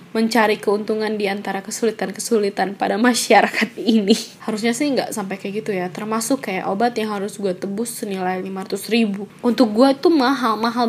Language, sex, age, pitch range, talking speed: Indonesian, female, 10-29, 200-255 Hz, 155 wpm